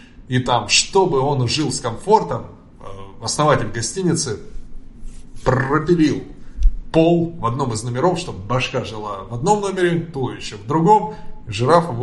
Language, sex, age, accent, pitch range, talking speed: Russian, male, 20-39, native, 110-140 Hz, 135 wpm